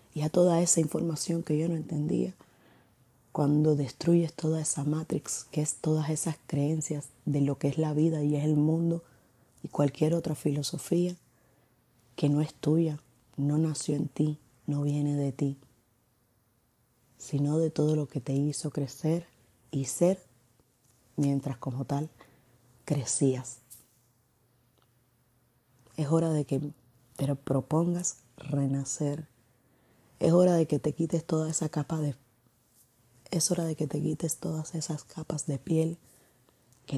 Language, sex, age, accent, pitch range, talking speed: Spanish, female, 30-49, American, 120-155 Hz, 145 wpm